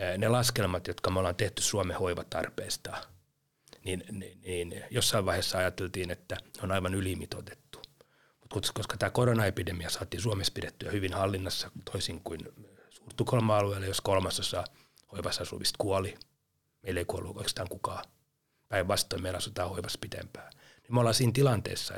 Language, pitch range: Finnish, 95-120 Hz